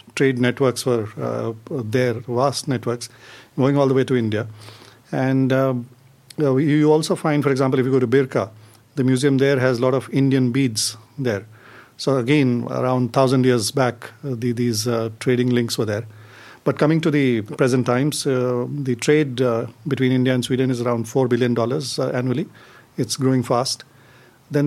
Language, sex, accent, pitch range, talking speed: English, male, Indian, 120-135 Hz, 170 wpm